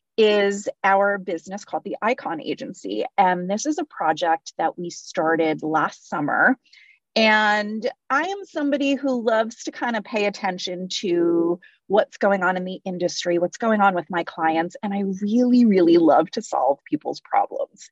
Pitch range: 185-275 Hz